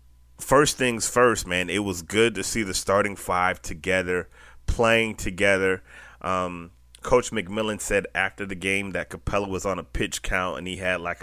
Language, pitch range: English, 95-120 Hz